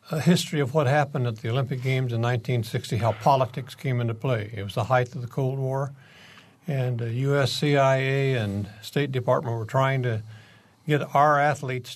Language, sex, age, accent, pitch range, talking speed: English, male, 60-79, American, 115-140 Hz, 190 wpm